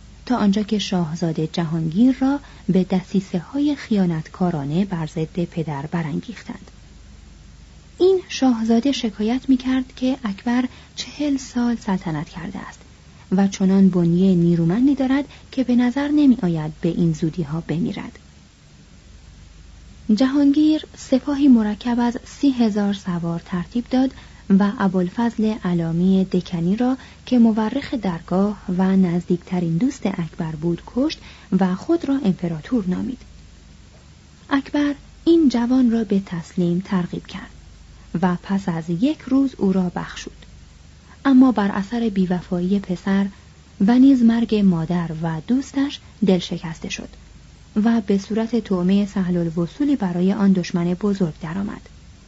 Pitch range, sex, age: 170-240 Hz, female, 30-49